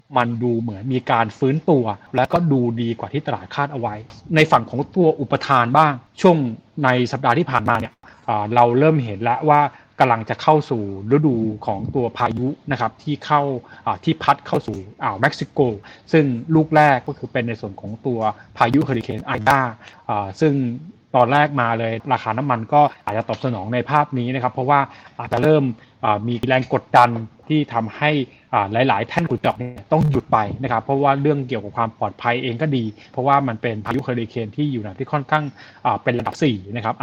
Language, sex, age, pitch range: Thai, male, 20-39, 115-145 Hz